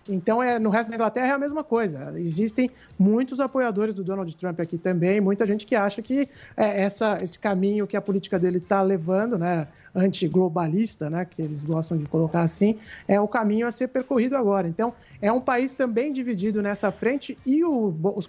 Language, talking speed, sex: Portuguese, 180 wpm, male